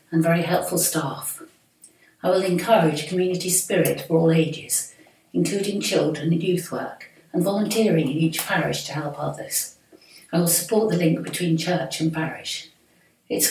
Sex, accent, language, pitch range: female, British, English, 155-180 Hz